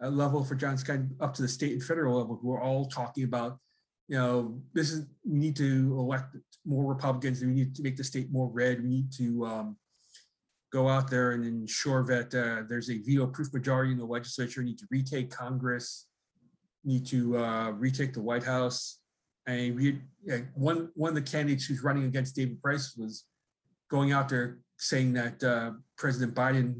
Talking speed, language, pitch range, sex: 205 wpm, English, 125-140 Hz, male